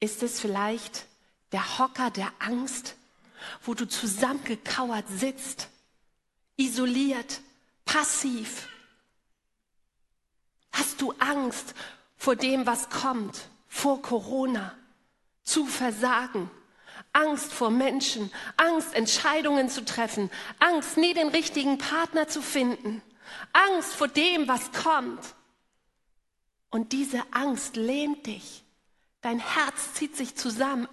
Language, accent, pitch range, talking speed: German, German, 215-275 Hz, 105 wpm